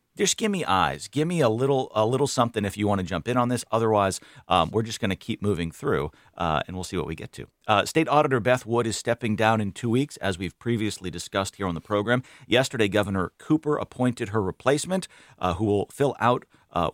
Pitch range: 95-125 Hz